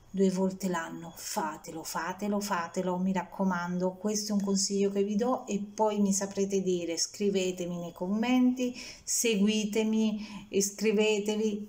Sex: female